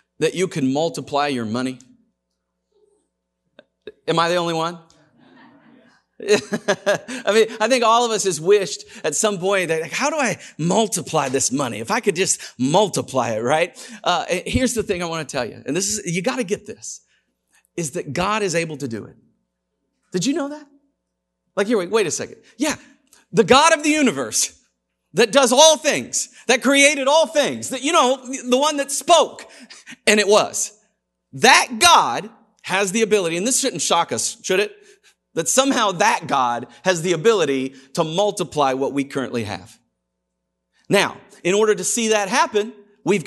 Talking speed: 180 wpm